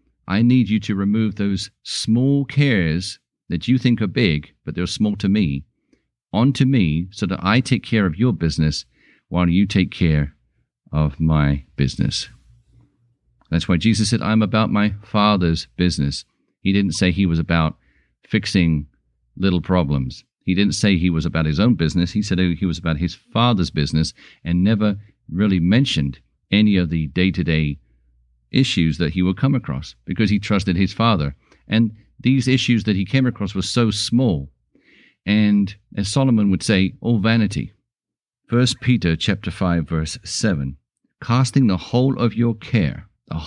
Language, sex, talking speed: English, male, 165 wpm